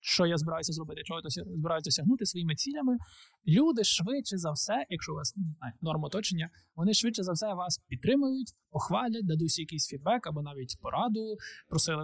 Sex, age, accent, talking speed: male, 20-39, native, 165 wpm